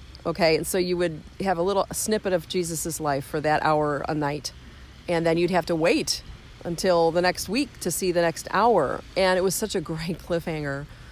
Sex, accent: female, American